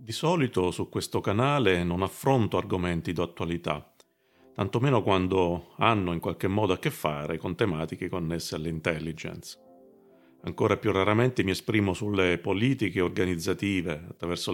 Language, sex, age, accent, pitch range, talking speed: Italian, male, 40-59, native, 85-105 Hz, 130 wpm